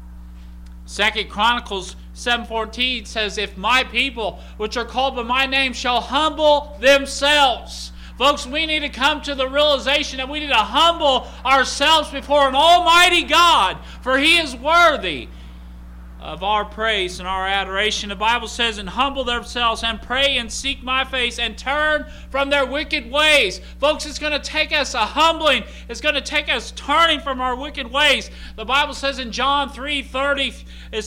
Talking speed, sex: 170 wpm, male